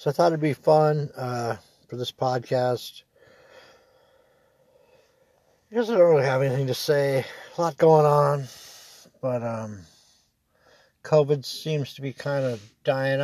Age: 60-79